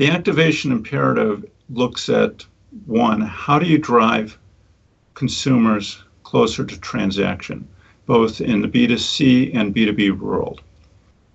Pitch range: 100-125 Hz